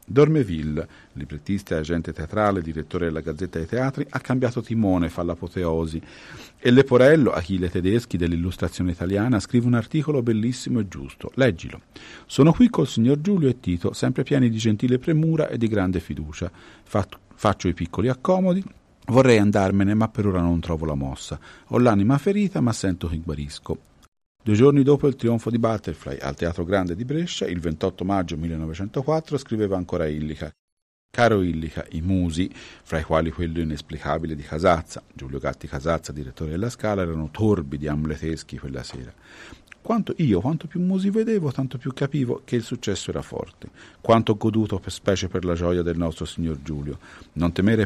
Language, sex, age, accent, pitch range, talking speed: Italian, male, 50-69, native, 80-120 Hz, 165 wpm